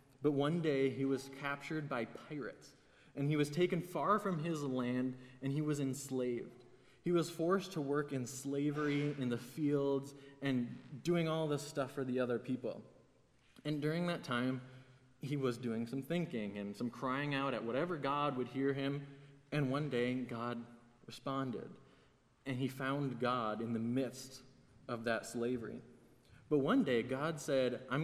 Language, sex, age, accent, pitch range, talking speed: English, male, 20-39, American, 125-155 Hz, 170 wpm